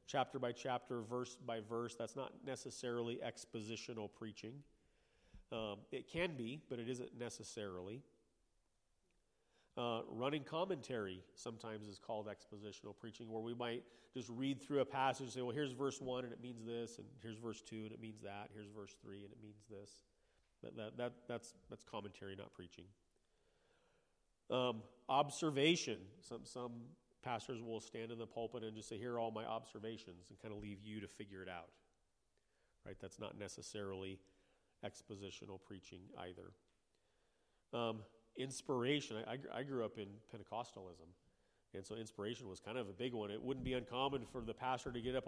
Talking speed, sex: 170 wpm, male